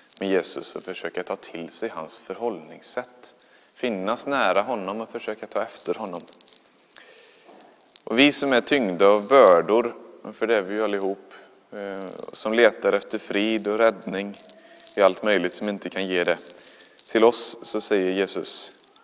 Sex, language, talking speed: male, Swedish, 150 wpm